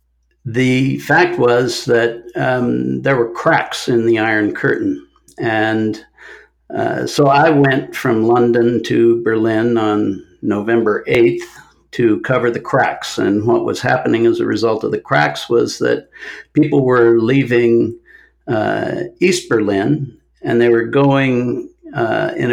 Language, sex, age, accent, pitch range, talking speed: English, male, 60-79, American, 115-150 Hz, 140 wpm